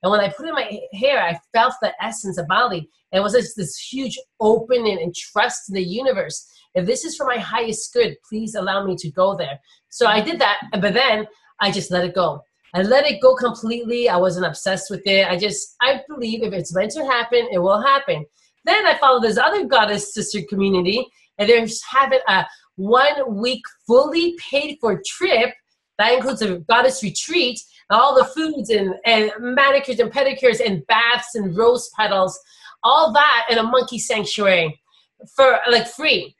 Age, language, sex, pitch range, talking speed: 30-49, English, female, 195-260 Hz, 190 wpm